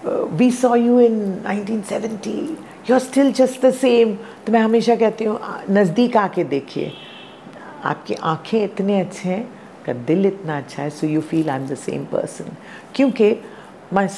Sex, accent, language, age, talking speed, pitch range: female, native, Hindi, 50-69, 170 wpm, 155-225 Hz